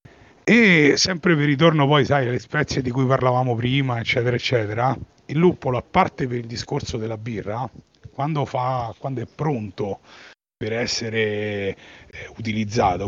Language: Italian